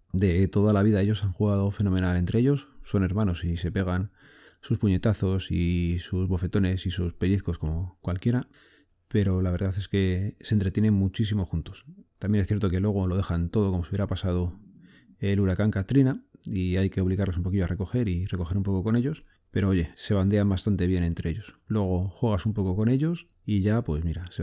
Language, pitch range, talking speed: Spanish, 90-110 Hz, 200 wpm